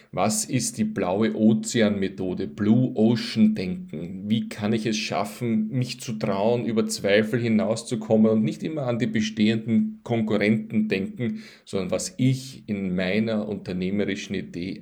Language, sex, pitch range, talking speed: German, male, 105-120 Hz, 140 wpm